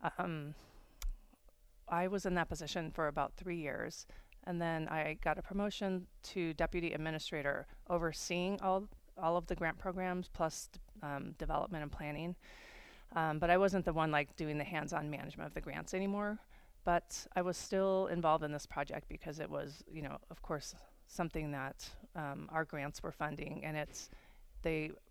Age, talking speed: 30-49, 170 wpm